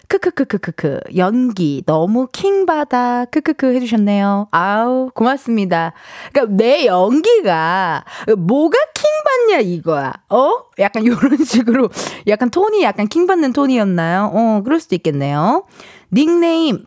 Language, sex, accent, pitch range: Korean, female, native, 185-295 Hz